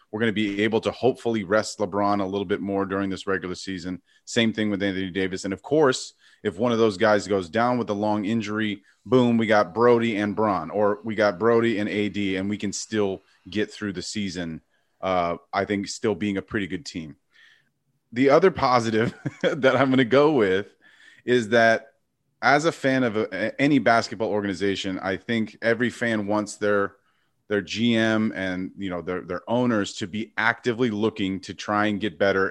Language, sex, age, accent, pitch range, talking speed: English, male, 30-49, American, 100-120 Hz, 195 wpm